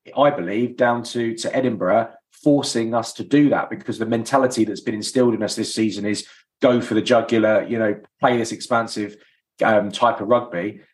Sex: male